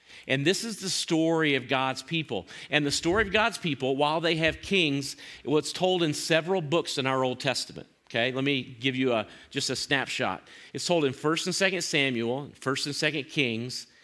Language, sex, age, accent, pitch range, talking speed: English, male, 40-59, American, 120-155 Hz, 195 wpm